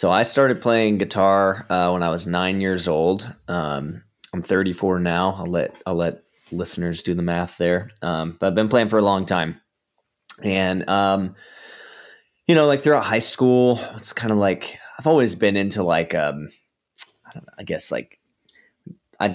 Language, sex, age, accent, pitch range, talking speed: English, male, 20-39, American, 85-105 Hz, 175 wpm